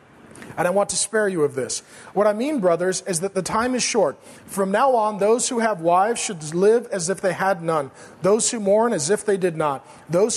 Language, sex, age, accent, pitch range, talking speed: English, male, 40-59, American, 170-220 Hz, 235 wpm